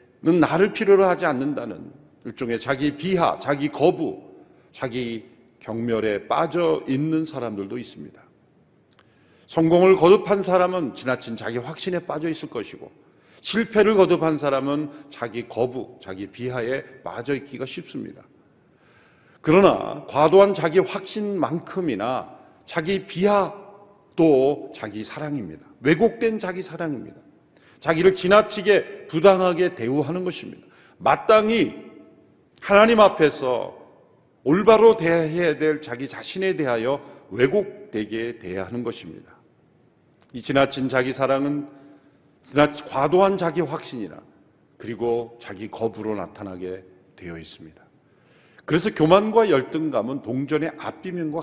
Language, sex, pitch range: Korean, male, 125-185 Hz